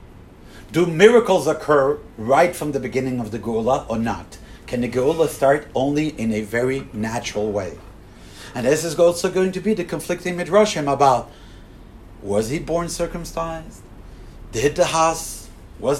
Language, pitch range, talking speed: English, 105-170 Hz, 155 wpm